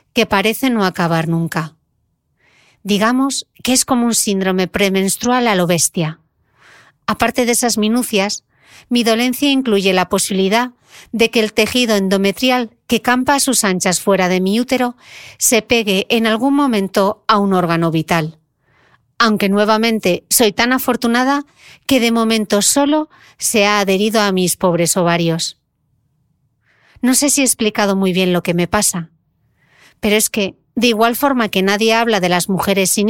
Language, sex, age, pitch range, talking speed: Spanish, female, 40-59, 180-230 Hz, 160 wpm